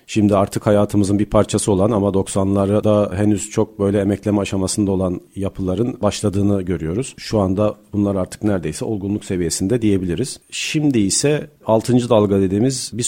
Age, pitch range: 40-59, 100-120 Hz